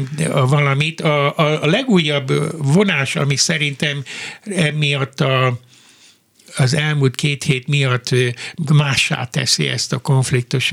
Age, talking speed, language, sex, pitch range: 60-79, 110 wpm, Hungarian, male, 130-155 Hz